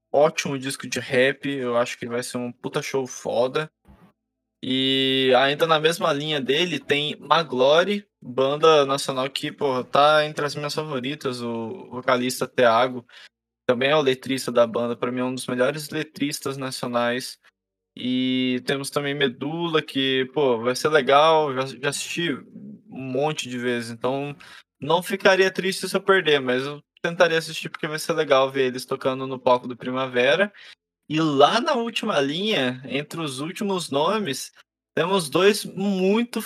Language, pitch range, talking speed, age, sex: Portuguese, 130-170 Hz, 160 wpm, 20-39, male